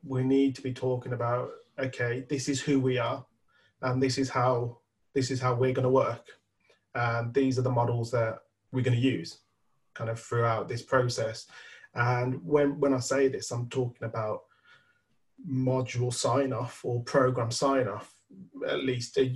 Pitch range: 120-140 Hz